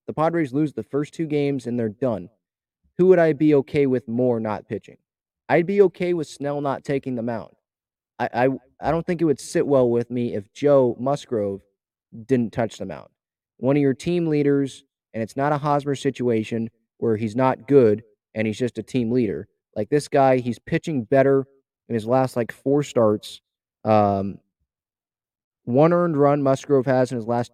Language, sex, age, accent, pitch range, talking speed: English, male, 20-39, American, 115-145 Hz, 190 wpm